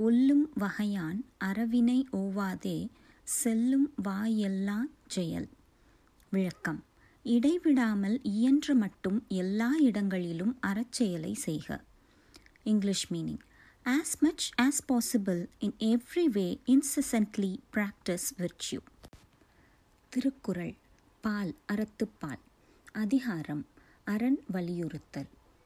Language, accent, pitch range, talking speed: Tamil, native, 195-255 Hz, 75 wpm